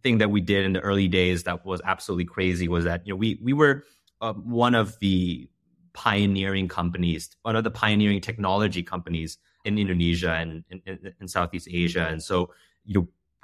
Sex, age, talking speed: male, 30-49, 190 wpm